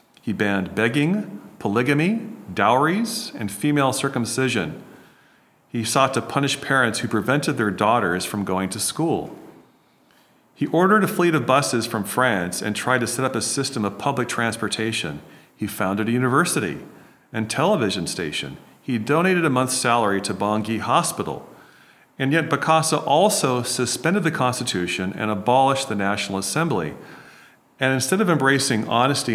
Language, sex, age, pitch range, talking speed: English, male, 40-59, 110-145 Hz, 145 wpm